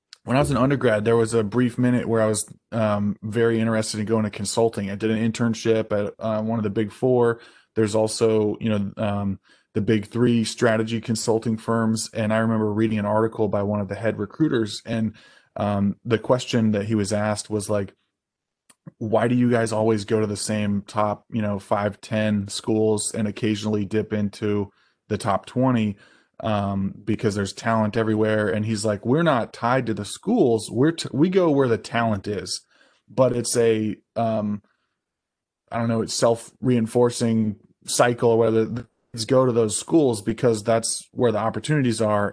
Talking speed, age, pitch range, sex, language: 185 wpm, 20-39, 105-115 Hz, male, English